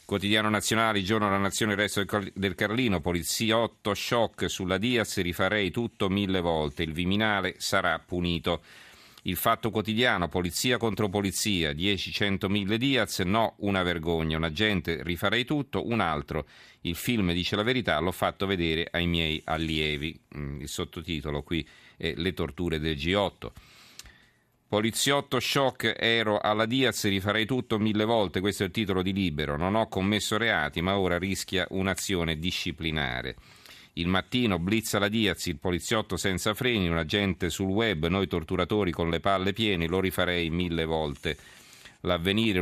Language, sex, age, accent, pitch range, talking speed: Italian, male, 40-59, native, 85-105 Hz, 155 wpm